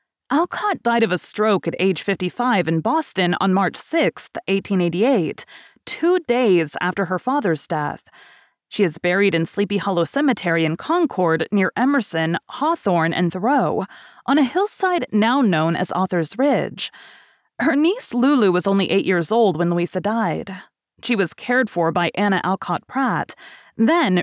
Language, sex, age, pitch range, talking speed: English, female, 30-49, 175-255 Hz, 155 wpm